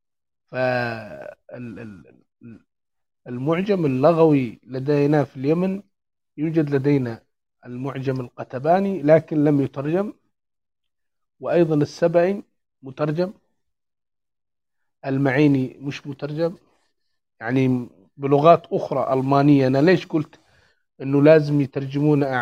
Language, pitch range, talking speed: English, 130-160 Hz, 75 wpm